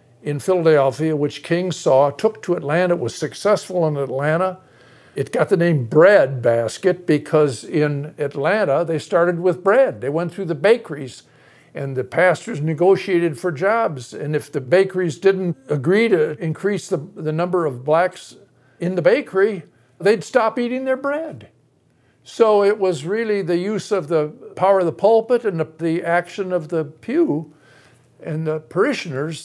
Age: 60-79